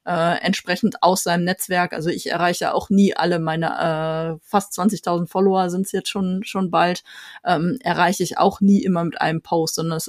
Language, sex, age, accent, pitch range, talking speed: German, female, 20-39, German, 175-200 Hz, 195 wpm